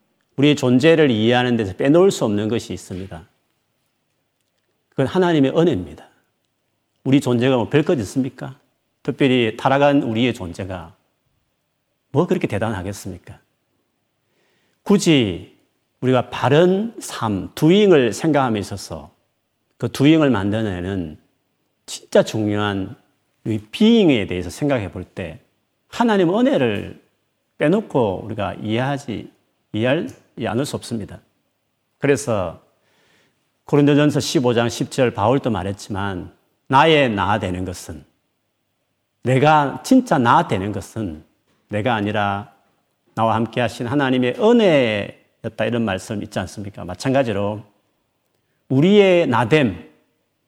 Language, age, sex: Korean, 40-59, male